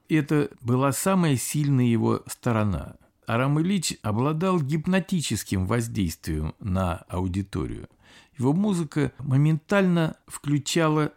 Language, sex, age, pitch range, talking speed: Russian, male, 50-69, 110-165 Hz, 90 wpm